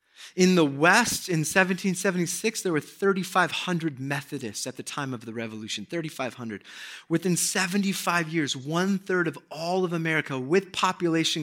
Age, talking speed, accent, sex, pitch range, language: 30-49, 135 wpm, American, male, 135-195 Hz, English